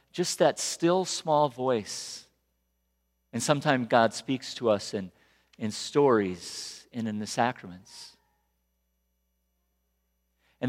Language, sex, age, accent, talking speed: English, male, 50-69, American, 105 wpm